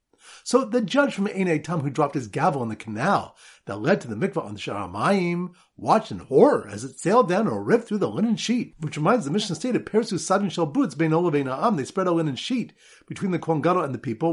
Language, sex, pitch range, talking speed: English, male, 145-195 Hz, 230 wpm